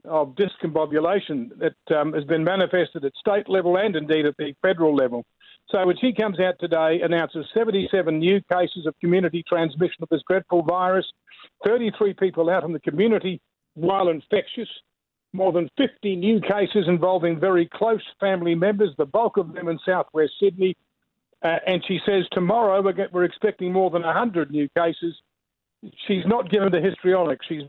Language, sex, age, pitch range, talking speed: English, male, 50-69, 170-200 Hz, 170 wpm